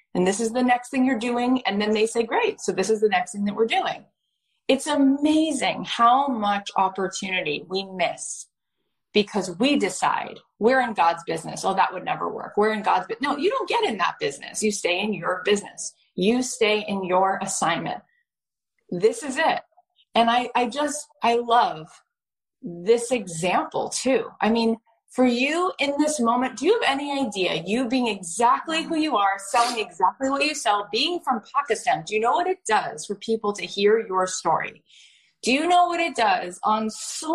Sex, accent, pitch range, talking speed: female, American, 205-275 Hz, 195 wpm